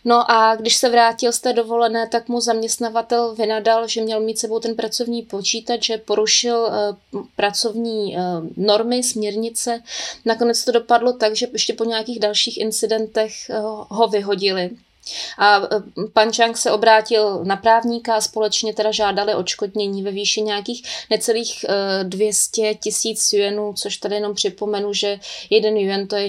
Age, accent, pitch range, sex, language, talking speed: 20-39, native, 200-230 Hz, female, Czech, 155 wpm